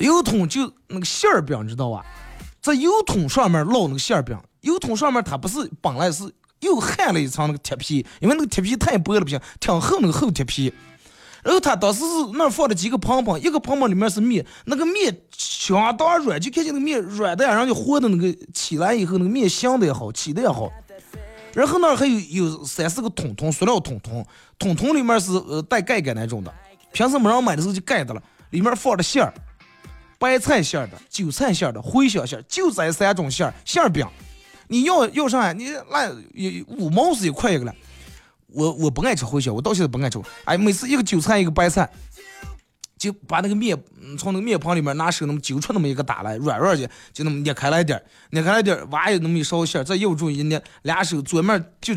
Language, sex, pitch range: Chinese, male, 150-240 Hz